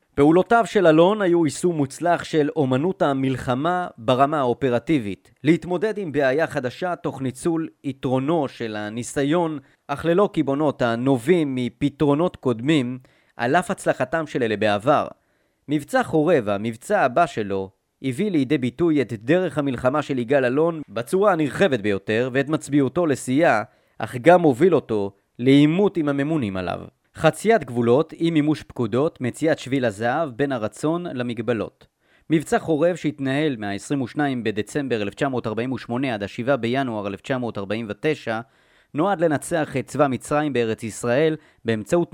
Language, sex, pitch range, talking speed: Hebrew, male, 120-160 Hz, 125 wpm